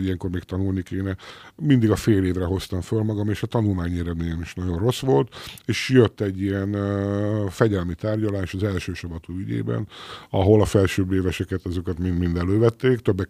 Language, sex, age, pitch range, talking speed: Hungarian, male, 50-69, 90-105 Hz, 170 wpm